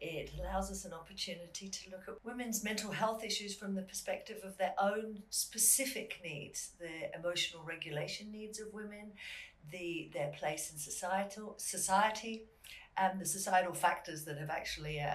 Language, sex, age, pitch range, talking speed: English, female, 50-69, 155-210 Hz, 160 wpm